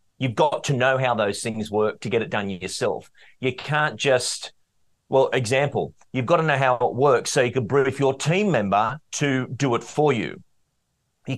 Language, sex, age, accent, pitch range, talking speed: English, male, 40-59, Australian, 120-150 Hz, 200 wpm